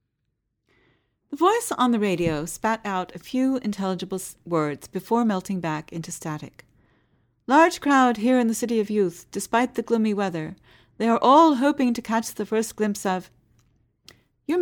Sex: female